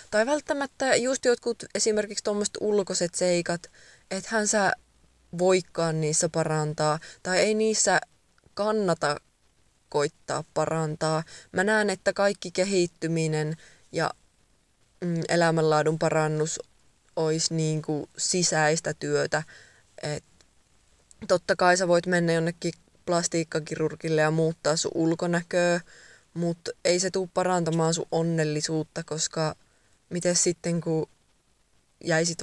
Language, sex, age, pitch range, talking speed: Finnish, female, 20-39, 160-180 Hz, 100 wpm